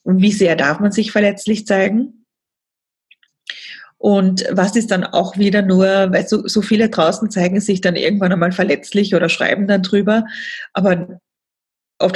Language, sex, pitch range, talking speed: German, female, 180-215 Hz, 160 wpm